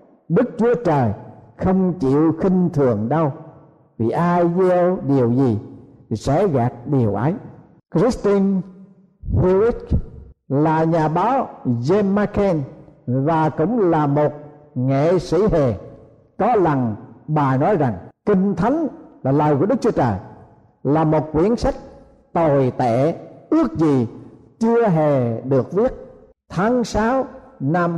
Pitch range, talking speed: 140-210 Hz, 130 wpm